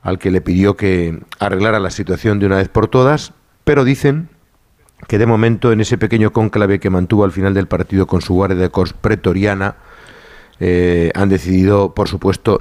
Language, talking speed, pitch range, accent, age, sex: Spanish, 185 wpm, 90-110 Hz, Spanish, 40-59, male